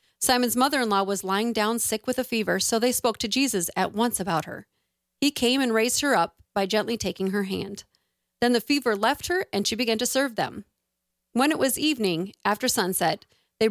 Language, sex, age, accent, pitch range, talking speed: English, female, 40-59, American, 200-255 Hz, 205 wpm